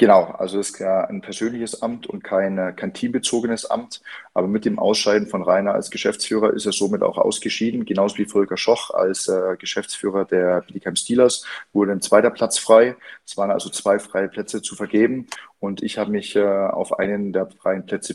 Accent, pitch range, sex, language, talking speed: German, 95-115 Hz, male, German, 195 wpm